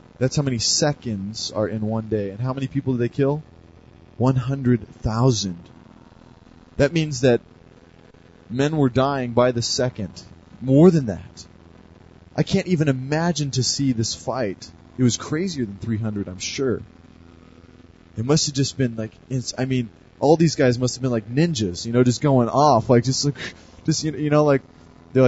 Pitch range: 90-145 Hz